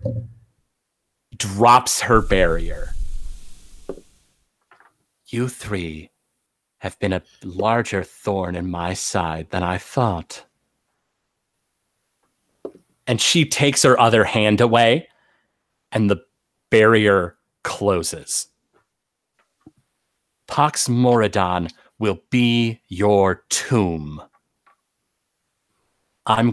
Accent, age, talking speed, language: American, 30-49, 75 wpm, English